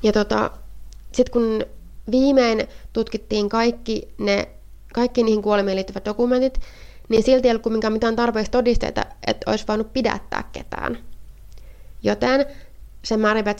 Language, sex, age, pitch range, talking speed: Finnish, female, 20-39, 195-235 Hz, 125 wpm